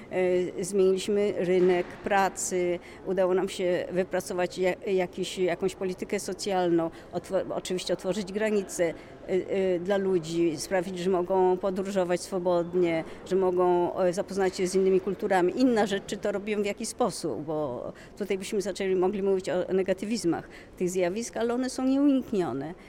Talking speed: 135 wpm